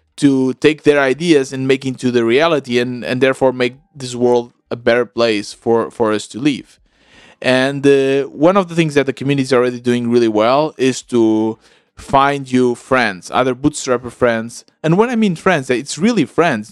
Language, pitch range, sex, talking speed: English, 115-145 Hz, male, 190 wpm